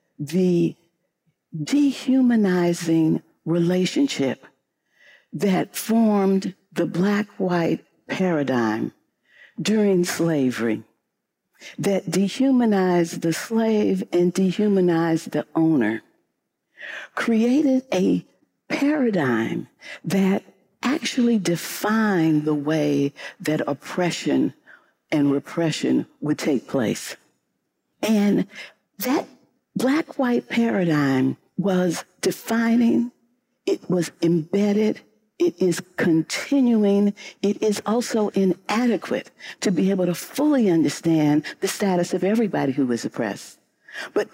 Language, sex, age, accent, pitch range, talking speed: English, female, 60-79, American, 165-230 Hz, 85 wpm